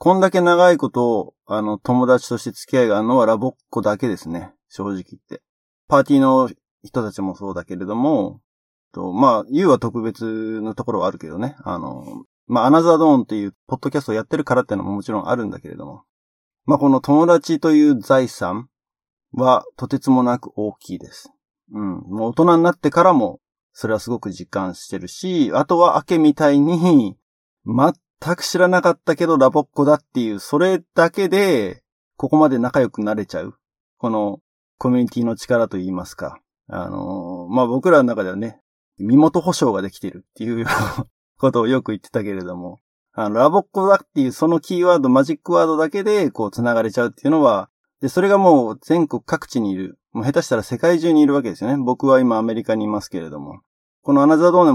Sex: male